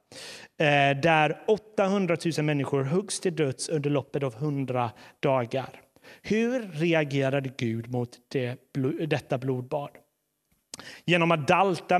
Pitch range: 140-180 Hz